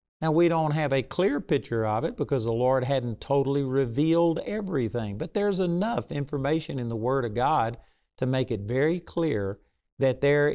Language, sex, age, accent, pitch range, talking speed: English, male, 50-69, American, 120-160 Hz, 180 wpm